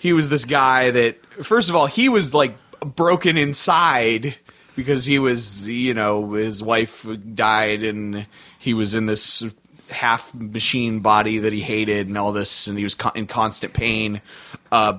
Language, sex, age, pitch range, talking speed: English, male, 20-39, 110-140 Hz, 170 wpm